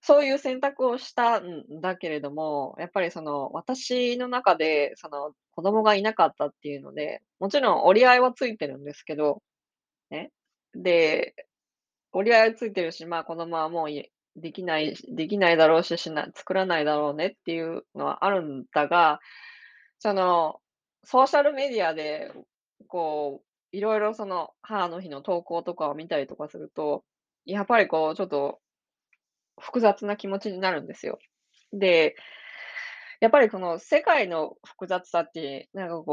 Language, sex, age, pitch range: Japanese, female, 20-39, 155-220 Hz